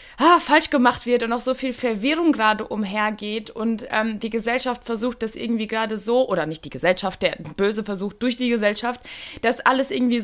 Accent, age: German, 20-39